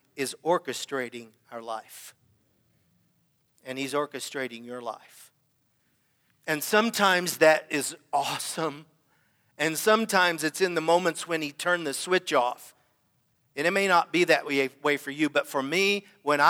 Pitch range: 130-165 Hz